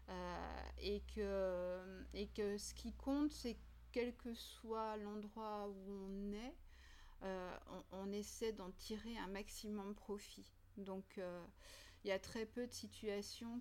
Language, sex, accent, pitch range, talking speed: French, female, French, 190-225 Hz, 155 wpm